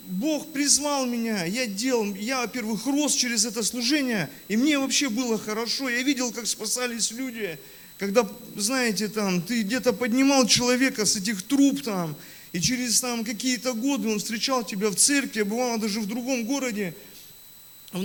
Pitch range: 190-250 Hz